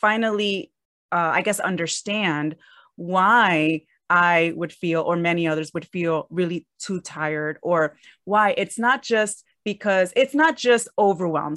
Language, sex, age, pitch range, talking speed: English, female, 30-49, 175-235 Hz, 140 wpm